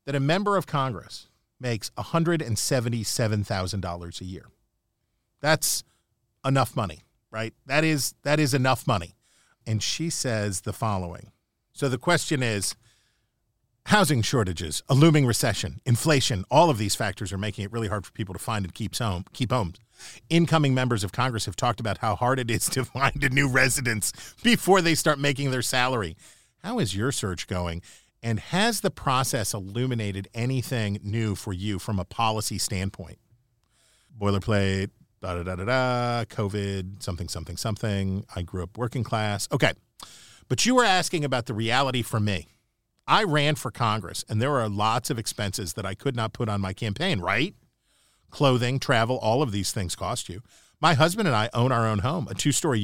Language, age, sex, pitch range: English, 40-59, male, 105-130 Hz